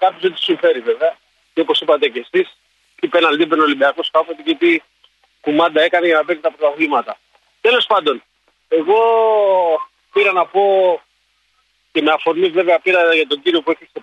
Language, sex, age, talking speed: Greek, male, 40-59, 170 wpm